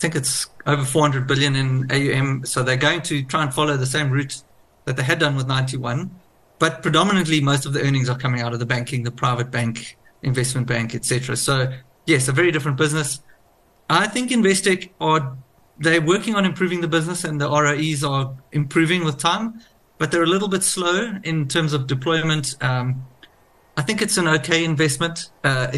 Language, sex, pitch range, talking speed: English, male, 130-165 Hz, 190 wpm